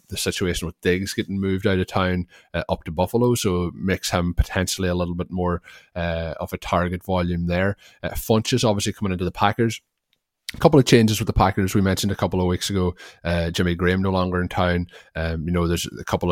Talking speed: 225 wpm